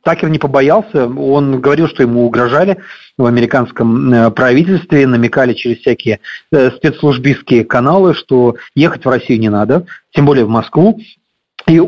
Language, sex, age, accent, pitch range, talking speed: Russian, male, 40-59, native, 130-185 Hz, 135 wpm